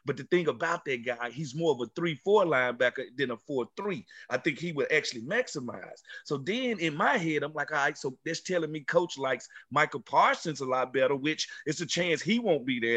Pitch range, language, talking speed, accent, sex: 150-195 Hz, English, 225 wpm, American, male